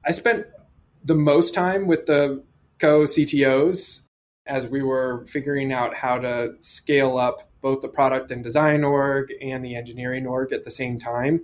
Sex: male